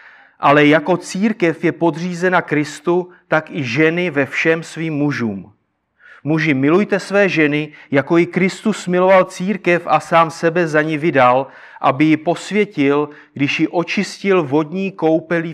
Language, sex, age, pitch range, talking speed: Czech, male, 30-49, 150-180 Hz, 140 wpm